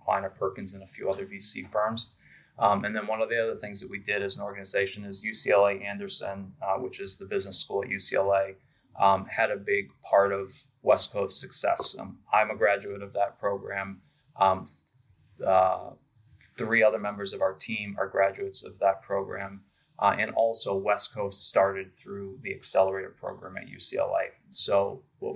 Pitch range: 95-110 Hz